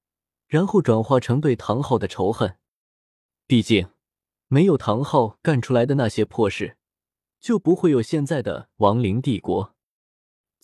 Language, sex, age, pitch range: Chinese, male, 20-39, 110-160 Hz